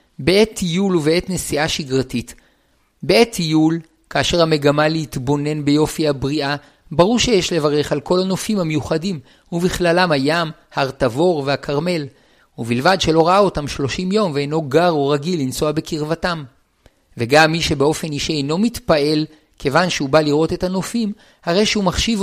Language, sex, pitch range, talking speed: Hebrew, male, 145-180 Hz, 140 wpm